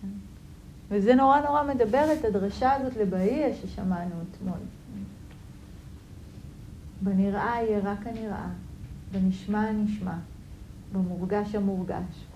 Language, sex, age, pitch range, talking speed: Hebrew, female, 40-59, 185-245 Hz, 85 wpm